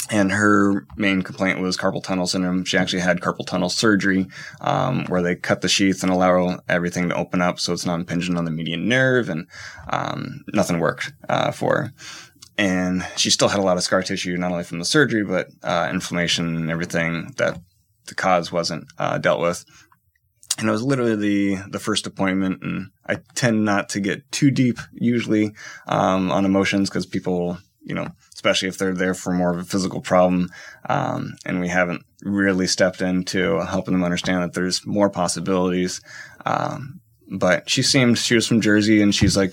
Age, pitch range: 20-39, 90-105 Hz